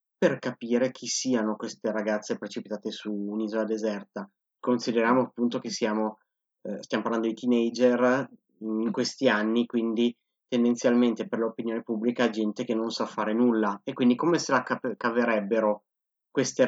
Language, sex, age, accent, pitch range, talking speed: Italian, male, 30-49, native, 110-130 Hz, 150 wpm